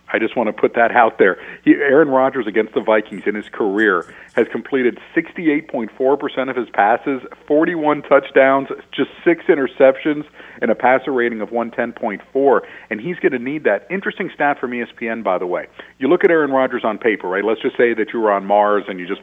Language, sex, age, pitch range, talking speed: English, male, 50-69, 125-170 Hz, 205 wpm